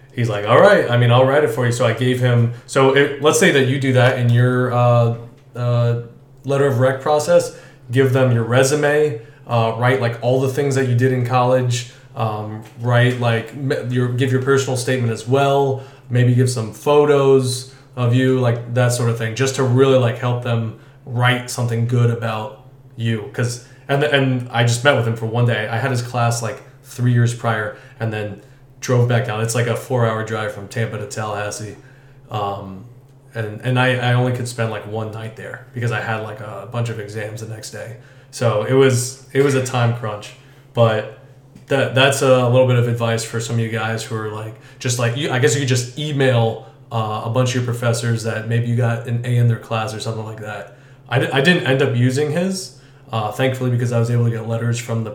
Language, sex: English, male